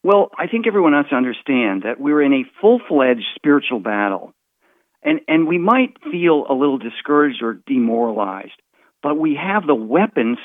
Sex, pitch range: male, 125-200 Hz